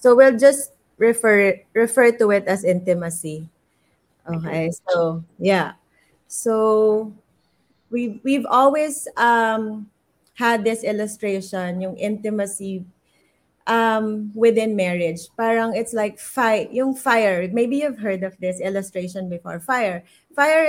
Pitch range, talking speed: 190-235 Hz, 115 wpm